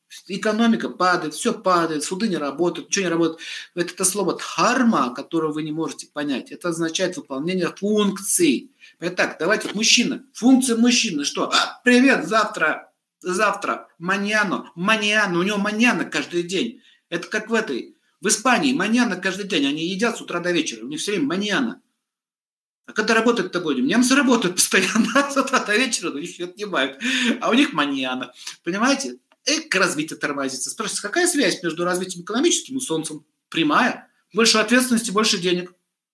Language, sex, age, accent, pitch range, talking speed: Russian, male, 50-69, native, 175-250 Hz, 160 wpm